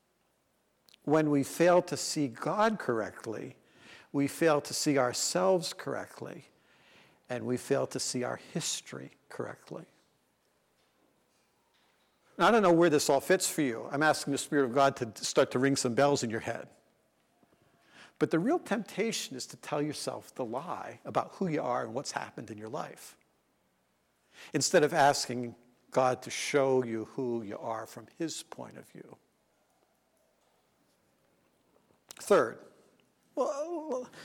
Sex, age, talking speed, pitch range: male, 70-89, 145 wpm, 125-155 Hz